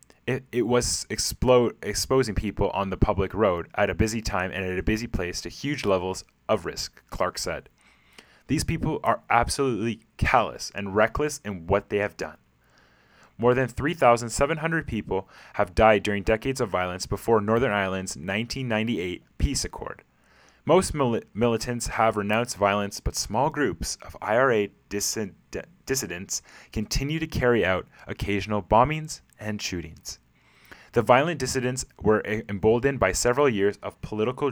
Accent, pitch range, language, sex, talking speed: American, 95-120 Hz, English, male, 145 wpm